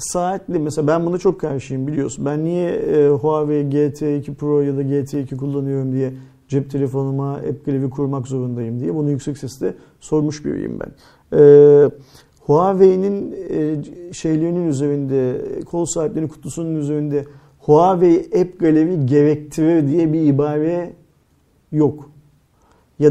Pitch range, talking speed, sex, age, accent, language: 140-160 Hz, 120 wpm, male, 50-69, native, Turkish